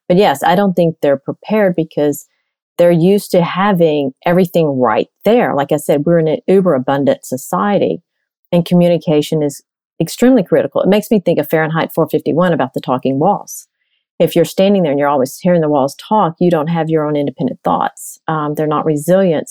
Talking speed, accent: 190 wpm, American